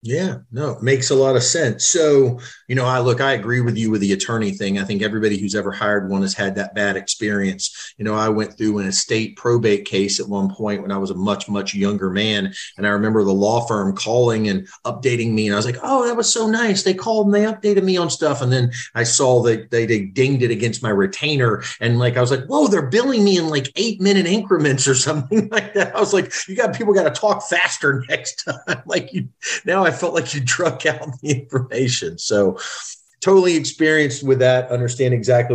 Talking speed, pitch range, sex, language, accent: 235 wpm, 105-145 Hz, male, English, American